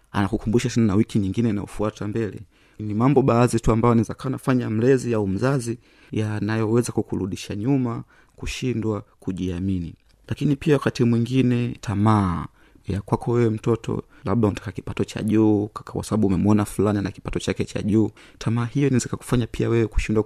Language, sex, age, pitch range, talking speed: Swahili, male, 30-49, 105-125 Hz, 155 wpm